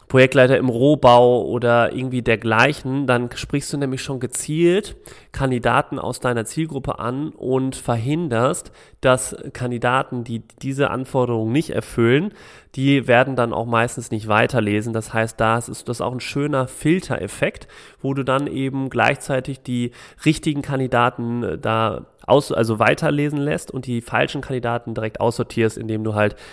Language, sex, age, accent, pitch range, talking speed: German, male, 30-49, German, 115-140 Hz, 145 wpm